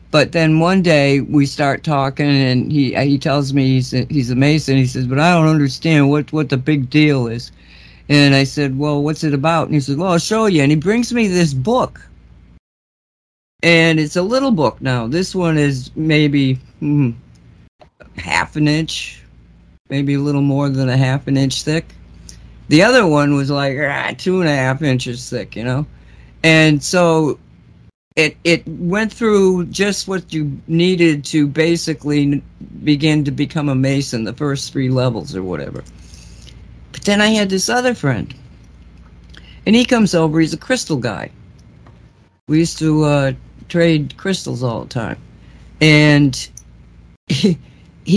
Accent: American